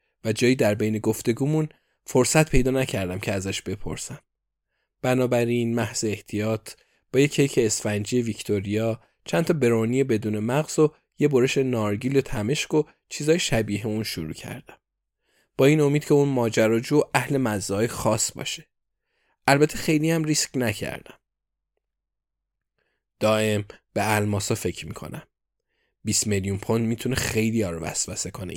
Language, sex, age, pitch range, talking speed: Persian, male, 20-39, 110-140 Hz, 130 wpm